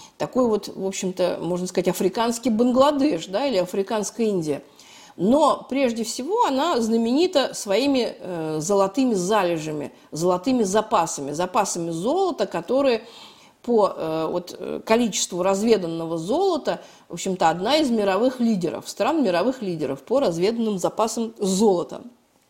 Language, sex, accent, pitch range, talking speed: Russian, female, native, 190-260 Hz, 115 wpm